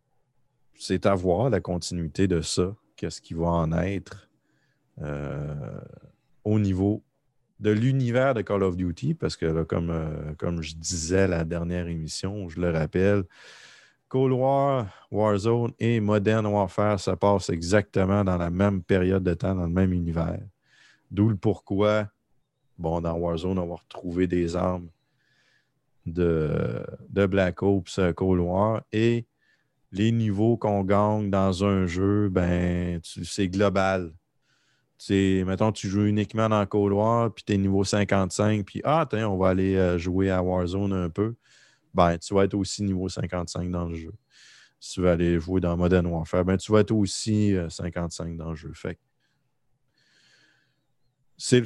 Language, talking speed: French, 160 wpm